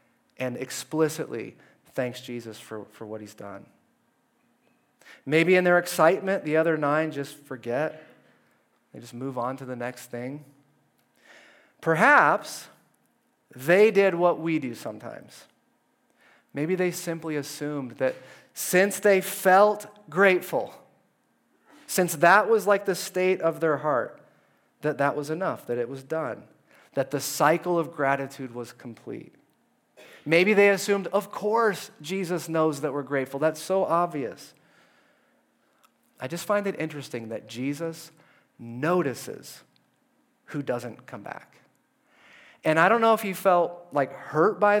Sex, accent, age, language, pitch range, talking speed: male, American, 30-49, English, 135-195 Hz, 135 wpm